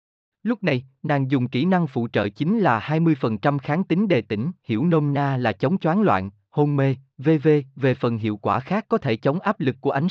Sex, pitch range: male, 115-175 Hz